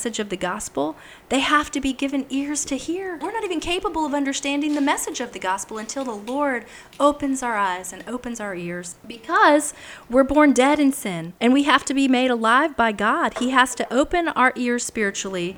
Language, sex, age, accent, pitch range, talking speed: English, female, 30-49, American, 220-295 Hz, 210 wpm